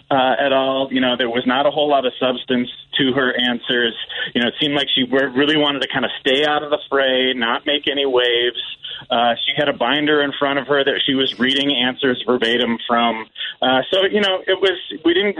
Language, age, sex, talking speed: English, 40-59, male, 235 wpm